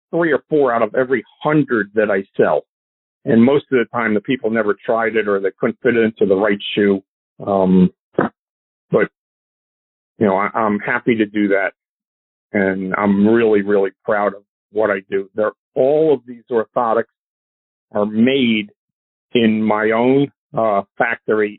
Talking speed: 165 wpm